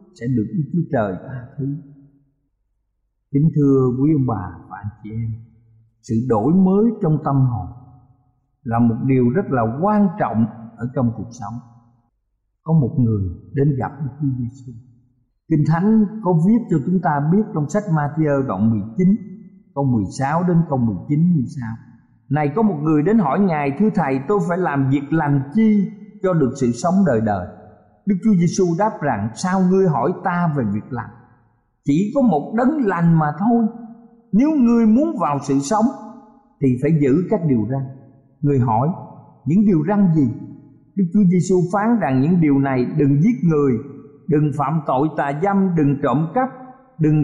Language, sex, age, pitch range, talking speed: Vietnamese, male, 50-69, 125-185 Hz, 180 wpm